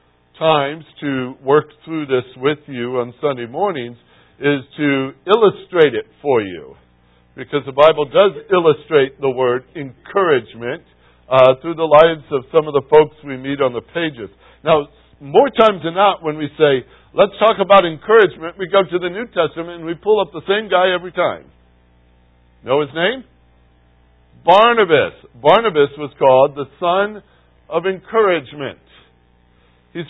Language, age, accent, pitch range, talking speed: English, 60-79, American, 130-190 Hz, 155 wpm